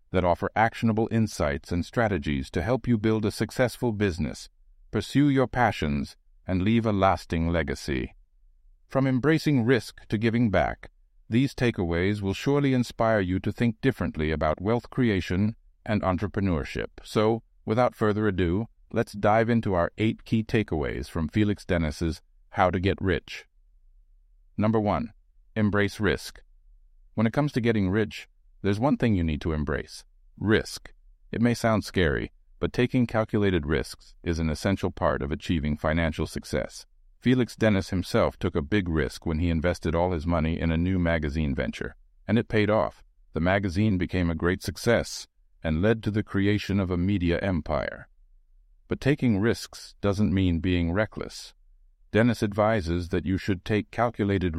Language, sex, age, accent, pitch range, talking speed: English, male, 50-69, American, 80-110 Hz, 160 wpm